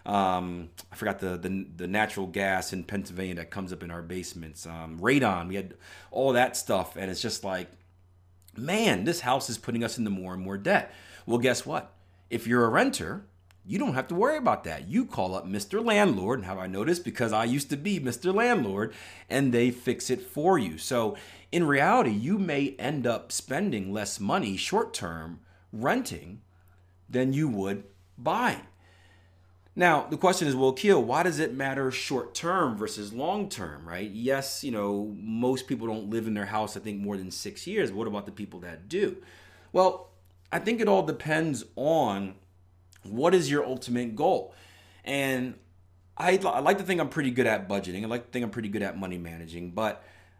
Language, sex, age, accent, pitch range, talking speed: English, male, 40-59, American, 95-130 Hz, 190 wpm